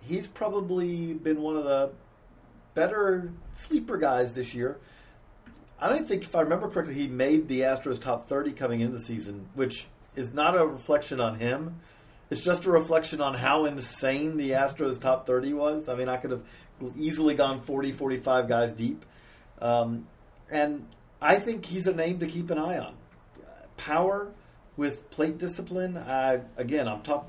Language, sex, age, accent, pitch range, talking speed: English, male, 40-59, American, 120-150 Hz, 175 wpm